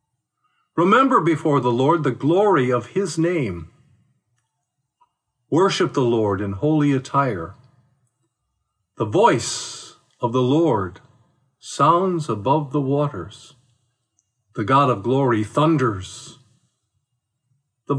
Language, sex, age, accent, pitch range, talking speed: English, male, 50-69, American, 125-175 Hz, 100 wpm